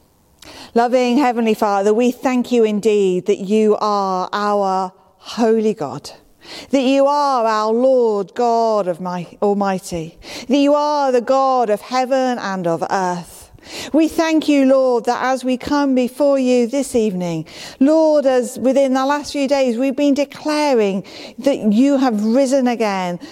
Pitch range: 185-255 Hz